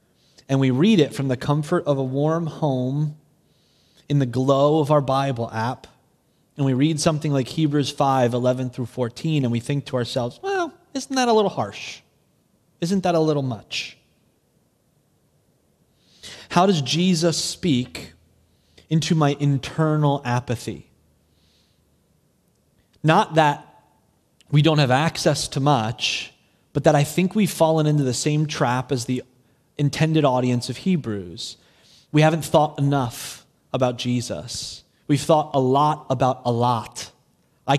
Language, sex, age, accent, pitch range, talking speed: English, male, 30-49, American, 130-165 Hz, 145 wpm